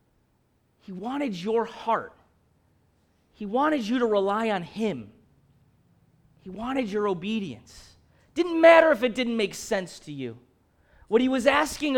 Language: English